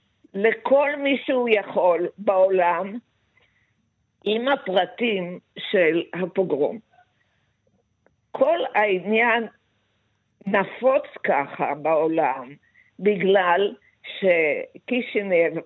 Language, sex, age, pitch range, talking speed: Hebrew, female, 50-69, 175-215 Hz, 60 wpm